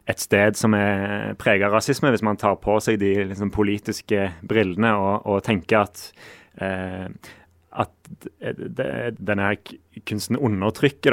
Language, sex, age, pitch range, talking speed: Danish, male, 30-49, 100-115 Hz, 125 wpm